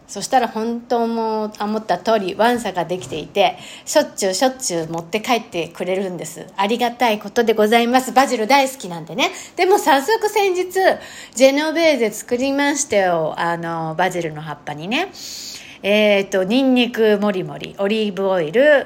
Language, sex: Japanese, female